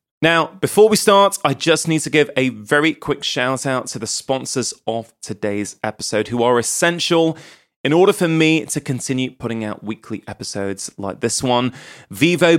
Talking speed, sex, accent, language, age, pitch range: 175 wpm, male, British, English, 30-49, 115-150 Hz